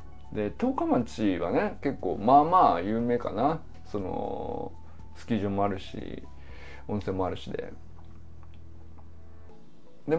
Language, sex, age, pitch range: Japanese, male, 20-39, 100-160 Hz